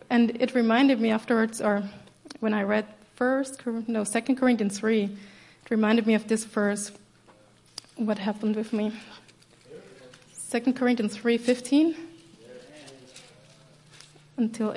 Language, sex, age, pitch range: English, female, 20-39, 205-245 Hz